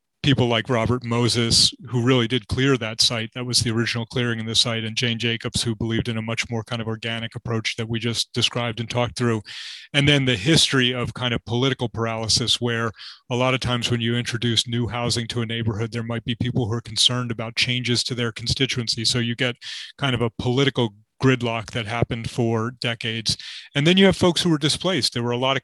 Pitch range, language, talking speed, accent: 115-135 Hz, English, 225 wpm, American